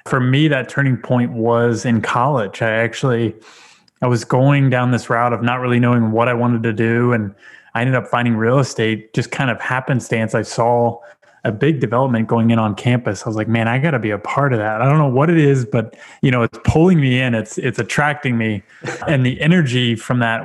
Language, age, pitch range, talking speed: English, 20-39, 115-140 Hz, 230 wpm